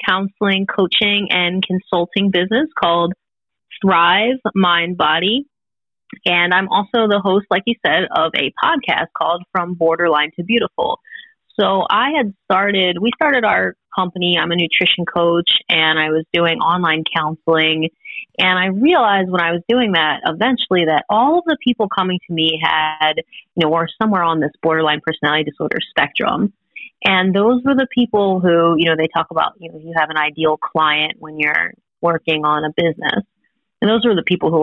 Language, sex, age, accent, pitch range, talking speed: English, female, 30-49, American, 160-210 Hz, 175 wpm